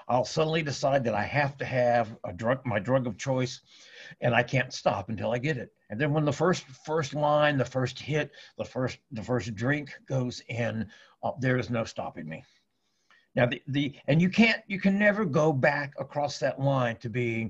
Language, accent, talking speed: English, American, 210 wpm